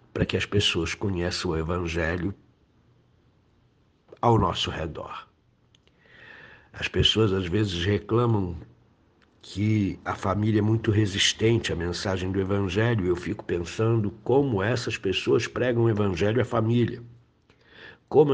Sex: male